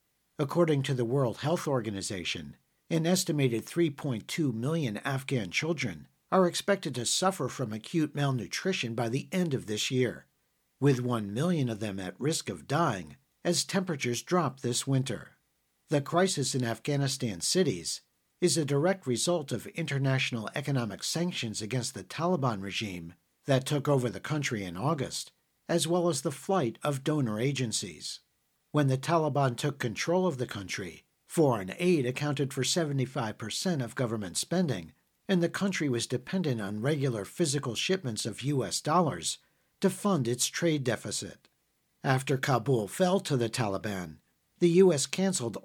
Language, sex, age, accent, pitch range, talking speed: English, male, 60-79, American, 115-165 Hz, 150 wpm